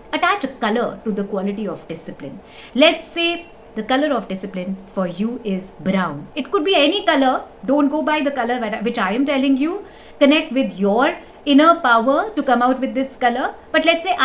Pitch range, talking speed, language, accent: 200-285 Hz, 200 wpm, English, Indian